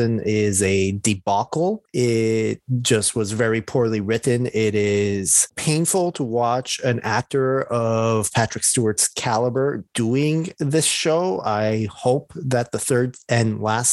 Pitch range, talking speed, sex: 110-130 Hz, 130 wpm, male